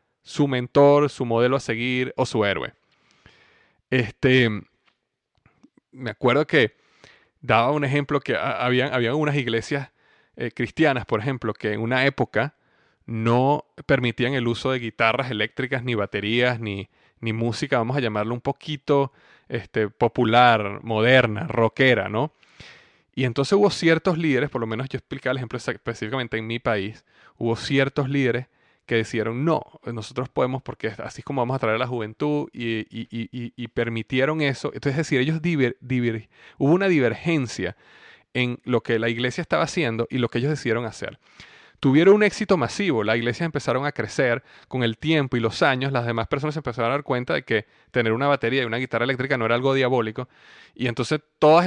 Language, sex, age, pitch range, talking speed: Spanish, male, 30-49, 115-140 Hz, 175 wpm